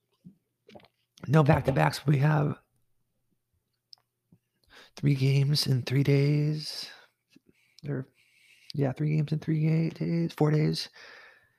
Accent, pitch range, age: American, 130-150 Hz, 30-49